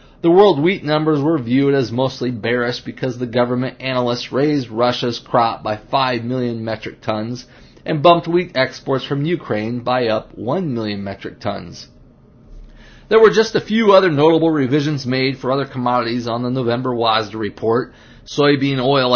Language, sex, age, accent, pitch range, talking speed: English, male, 30-49, American, 120-145 Hz, 165 wpm